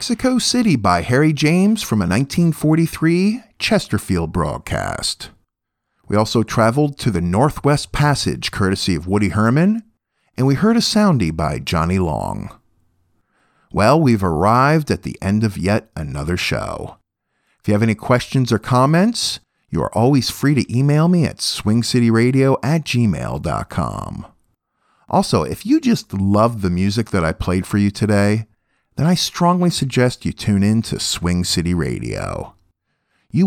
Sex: male